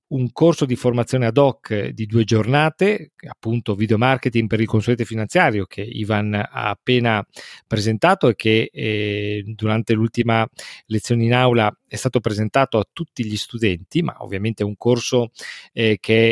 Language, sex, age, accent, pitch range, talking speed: Italian, male, 40-59, native, 110-140 Hz, 160 wpm